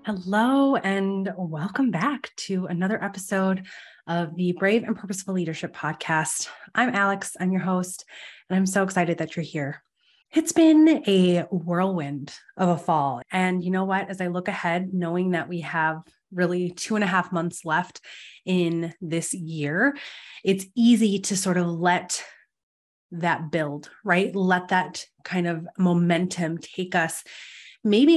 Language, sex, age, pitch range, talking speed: English, female, 20-39, 170-195 Hz, 155 wpm